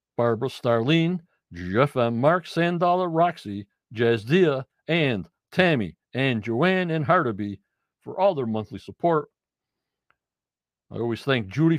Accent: American